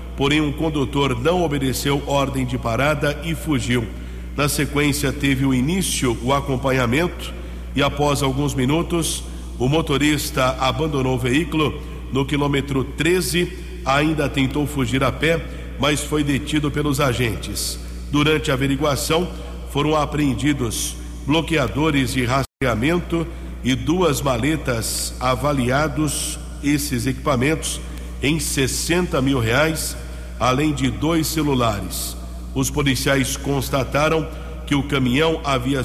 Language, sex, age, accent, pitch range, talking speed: English, male, 60-79, Brazilian, 125-150 Hz, 115 wpm